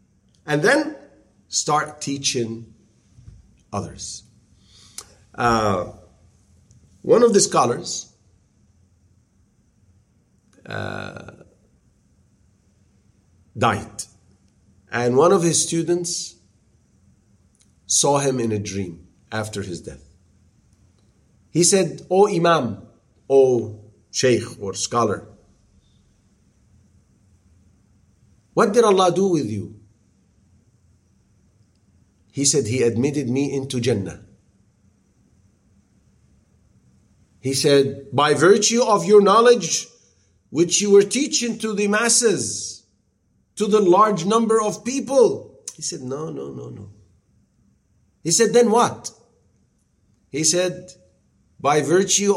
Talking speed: 90 wpm